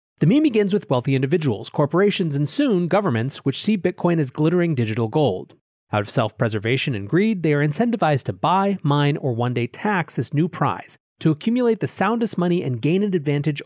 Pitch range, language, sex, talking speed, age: 130-185 Hz, English, male, 200 wpm, 30-49